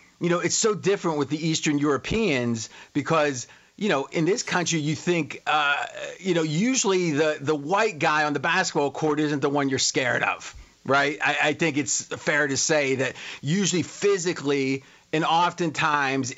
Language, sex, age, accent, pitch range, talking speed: English, male, 40-59, American, 140-175 Hz, 175 wpm